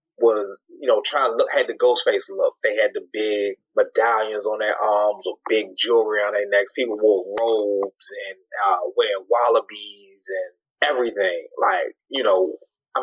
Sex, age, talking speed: male, 20-39, 175 wpm